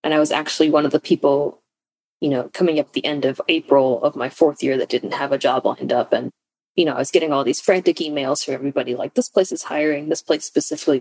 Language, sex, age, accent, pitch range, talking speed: English, female, 20-39, American, 150-225 Hz, 255 wpm